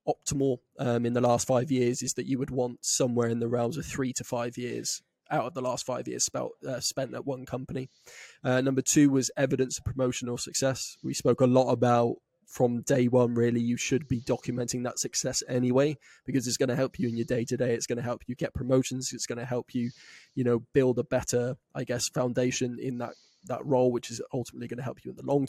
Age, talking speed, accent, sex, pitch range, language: 20-39, 240 wpm, British, male, 120-130 Hz, English